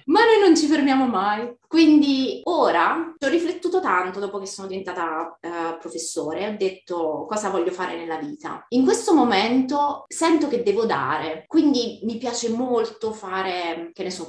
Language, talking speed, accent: Italian, 165 wpm, native